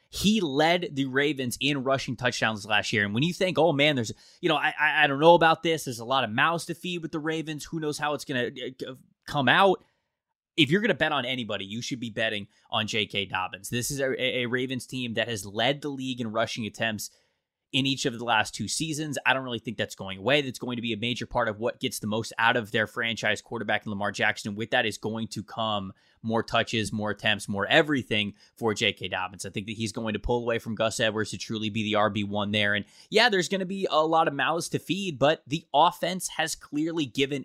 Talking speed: 240 wpm